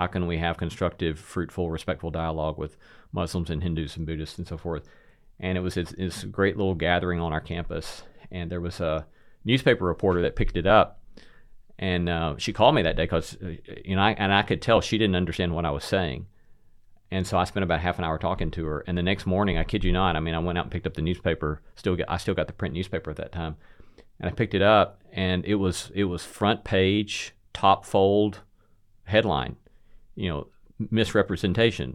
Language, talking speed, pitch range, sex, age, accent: English, 220 wpm, 85-95 Hz, male, 40-59, American